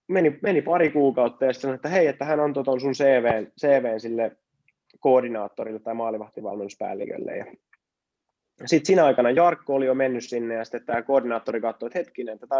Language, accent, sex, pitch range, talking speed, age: Finnish, native, male, 115-135 Hz, 150 wpm, 20-39